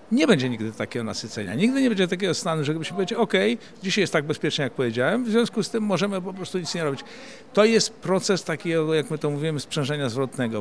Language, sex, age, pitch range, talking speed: Polish, male, 50-69, 140-195 Hz, 225 wpm